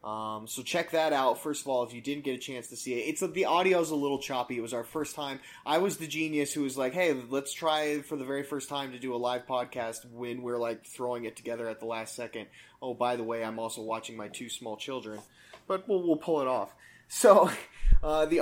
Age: 20-39